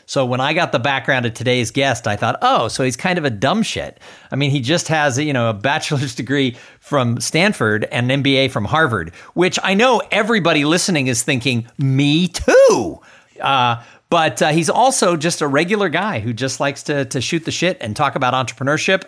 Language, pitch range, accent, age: English, 125-170 Hz, American, 50-69